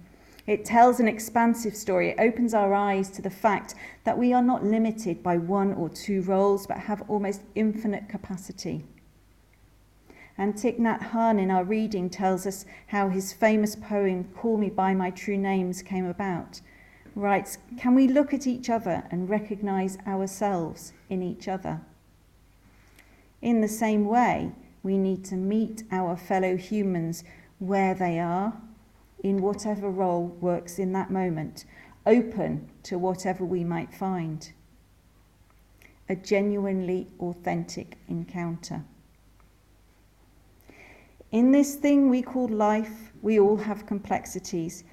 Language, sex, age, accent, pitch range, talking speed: English, female, 40-59, British, 170-210 Hz, 135 wpm